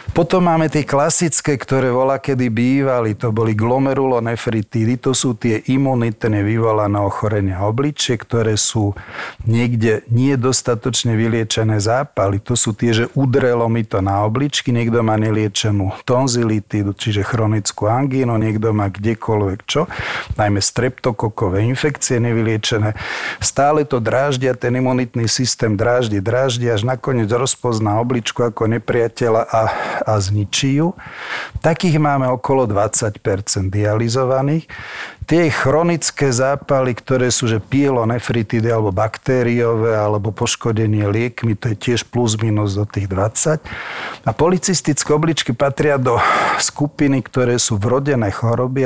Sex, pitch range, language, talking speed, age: male, 110-130 Hz, Slovak, 125 wpm, 40-59